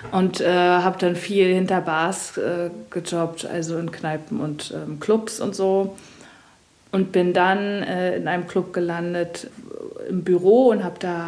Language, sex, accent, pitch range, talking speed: German, female, German, 165-200 Hz, 160 wpm